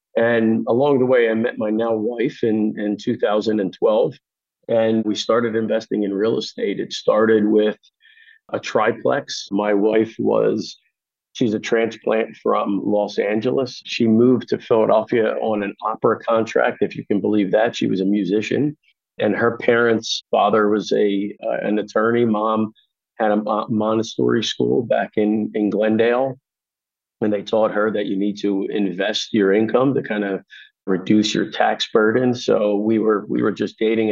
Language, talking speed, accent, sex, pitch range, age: English, 165 wpm, American, male, 105-115 Hz, 40-59